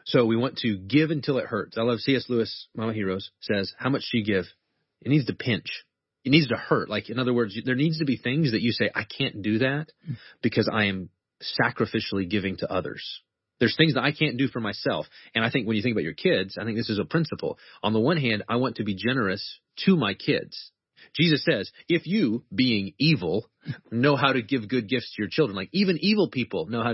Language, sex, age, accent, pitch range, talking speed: English, male, 30-49, American, 105-135 Hz, 240 wpm